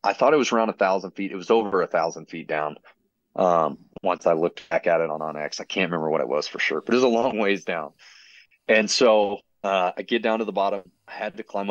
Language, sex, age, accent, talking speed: English, male, 30-49, American, 270 wpm